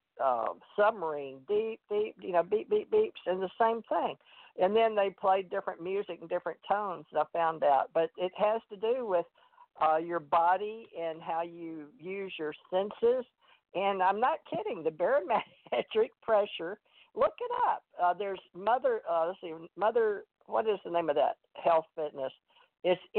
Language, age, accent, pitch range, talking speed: English, 50-69, American, 170-255 Hz, 170 wpm